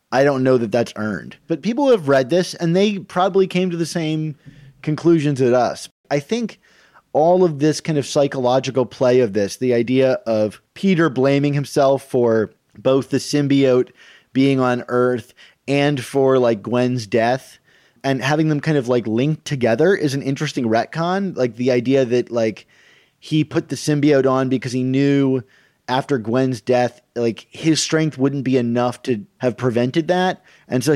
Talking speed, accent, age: 175 wpm, American, 30-49